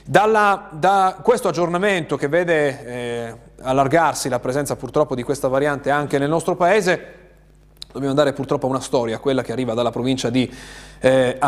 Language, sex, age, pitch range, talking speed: Italian, male, 30-49, 115-145 Hz, 160 wpm